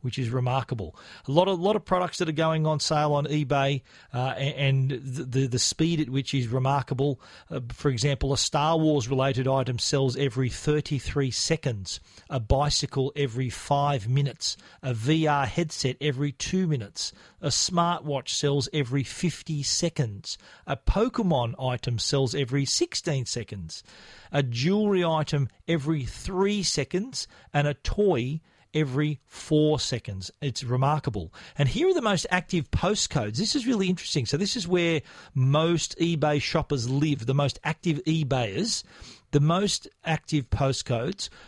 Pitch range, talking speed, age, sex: 130-160 Hz, 150 wpm, 40-59, male